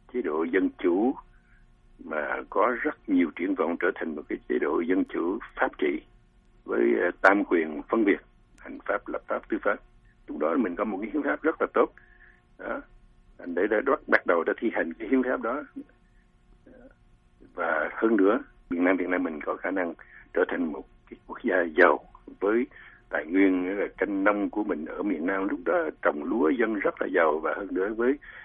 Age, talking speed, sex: 60-79, 200 wpm, male